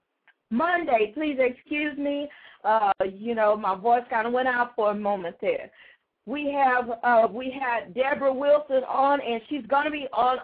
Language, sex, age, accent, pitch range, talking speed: English, female, 50-69, American, 250-295 Hz, 180 wpm